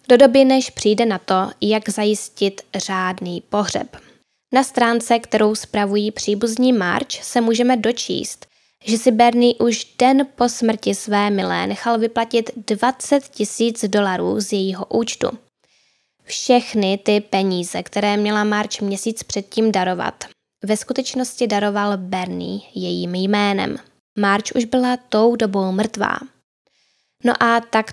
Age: 10-29